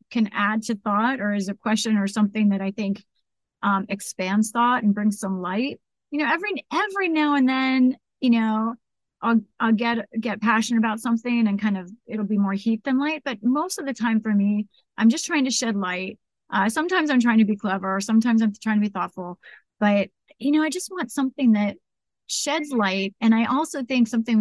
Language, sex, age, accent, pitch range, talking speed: English, female, 30-49, American, 205-260 Hz, 215 wpm